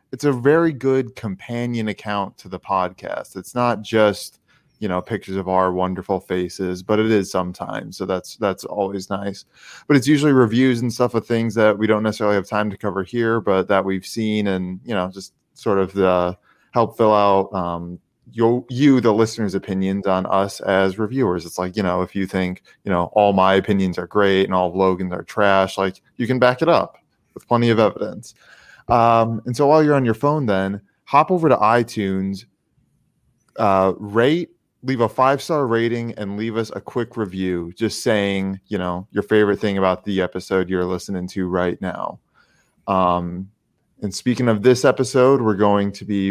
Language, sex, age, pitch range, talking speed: English, male, 20-39, 95-120 Hz, 195 wpm